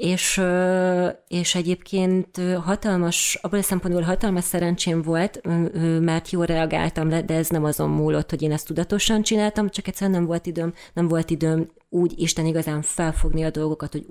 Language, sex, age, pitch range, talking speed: Hungarian, female, 30-49, 155-185 Hz, 165 wpm